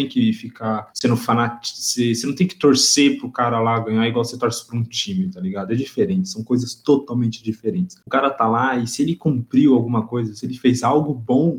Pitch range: 120-165 Hz